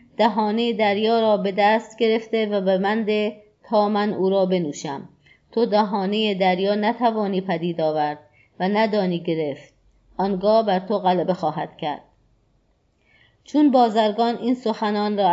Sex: female